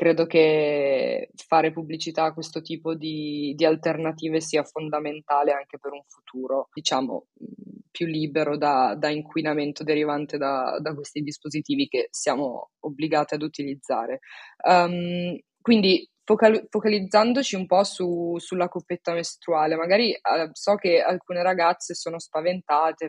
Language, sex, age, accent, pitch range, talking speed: Italian, female, 20-39, native, 150-170 Hz, 130 wpm